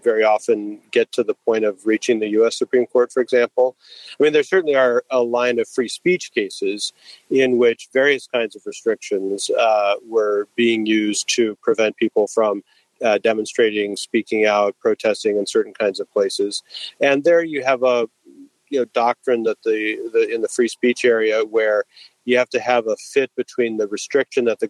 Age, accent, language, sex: 40-59, American, English, male